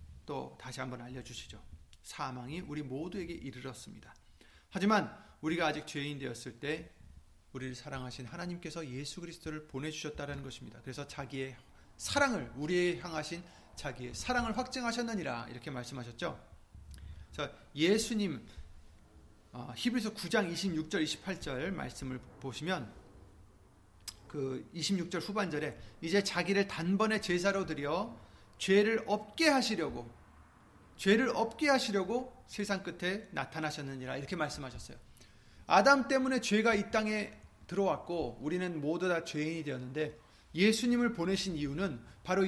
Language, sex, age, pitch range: Korean, male, 30-49, 125-200 Hz